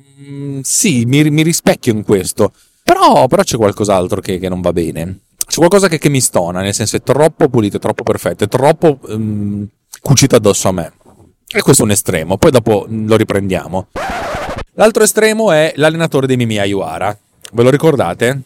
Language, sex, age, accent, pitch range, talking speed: Italian, male, 30-49, native, 100-130 Hz, 185 wpm